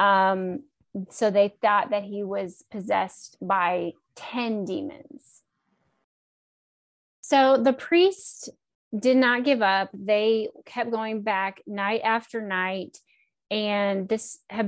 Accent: American